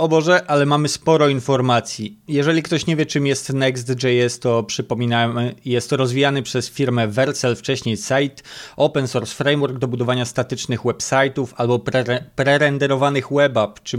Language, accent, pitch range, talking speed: Polish, native, 125-140 Hz, 150 wpm